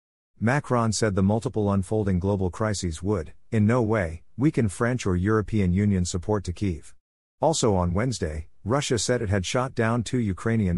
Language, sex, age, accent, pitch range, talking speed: English, male, 50-69, American, 90-115 Hz, 165 wpm